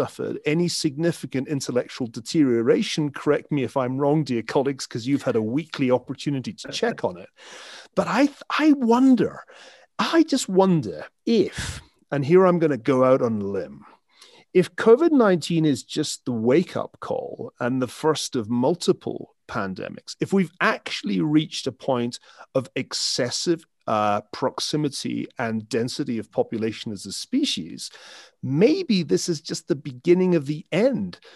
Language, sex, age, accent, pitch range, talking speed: English, male, 40-59, British, 135-185 Hz, 150 wpm